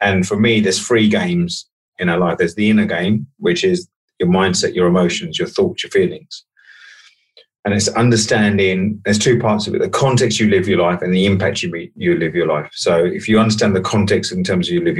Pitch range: 90-115 Hz